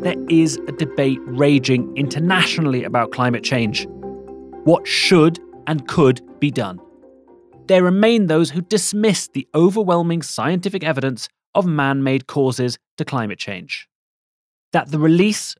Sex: male